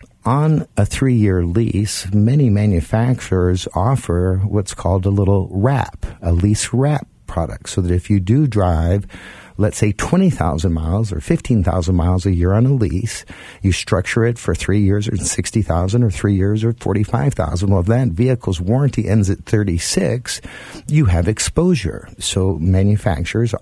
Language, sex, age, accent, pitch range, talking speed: English, male, 50-69, American, 90-115 Hz, 155 wpm